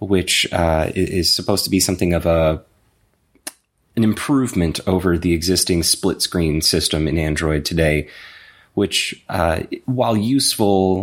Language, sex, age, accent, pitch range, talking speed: English, male, 20-39, American, 80-95 Hz, 125 wpm